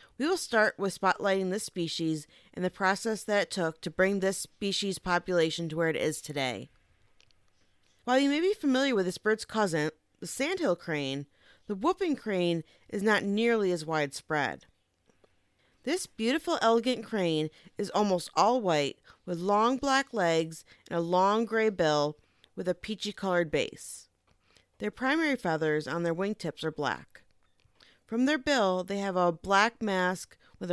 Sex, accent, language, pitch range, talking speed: female, American, English, 160-230 Hz, 160 wpm